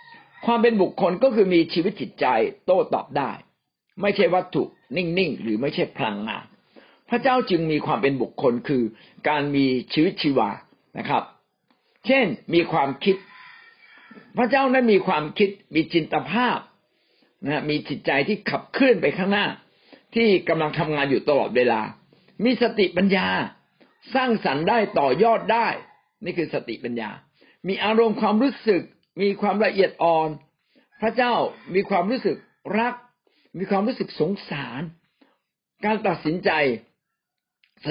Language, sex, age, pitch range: Thai, male, 60-79, 145-220 Hz